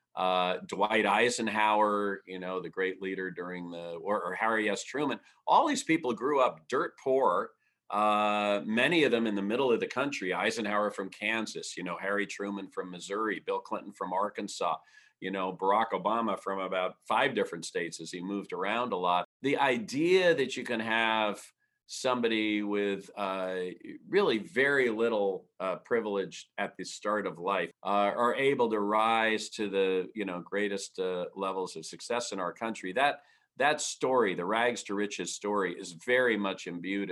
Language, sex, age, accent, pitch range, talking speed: English, male, 40-59, American, 95-115 Hz, 175 wpm